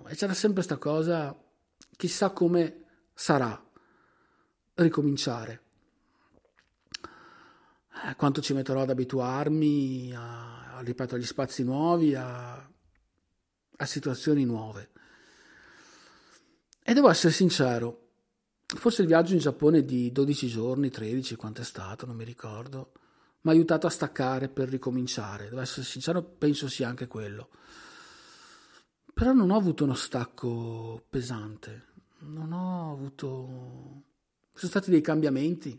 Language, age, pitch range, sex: Italian, 50-69, 120-160 Hz, male